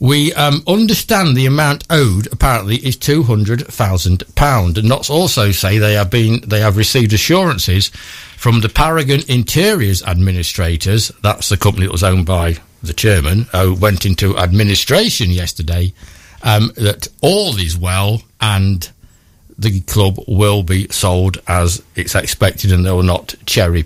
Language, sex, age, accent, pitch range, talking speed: English, male, 60-79, British, 90-120 Hz, 155 wpm